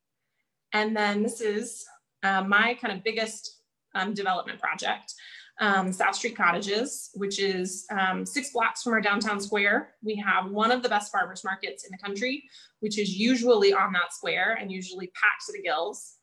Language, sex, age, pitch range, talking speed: English, female, 20-39, 200-240 Hz, 180 wpm